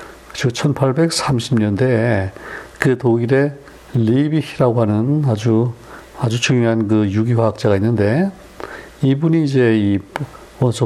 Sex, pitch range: male, 105-135 Hz